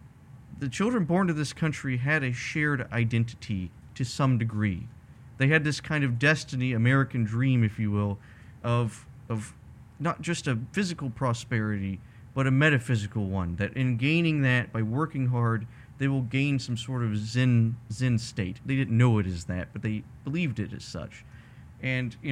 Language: English